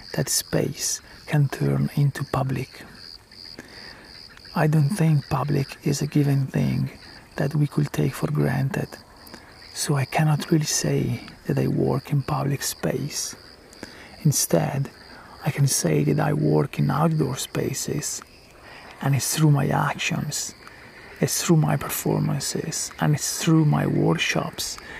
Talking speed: 130 wpm